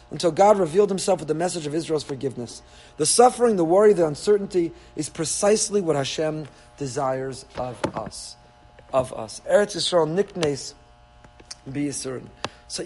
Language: English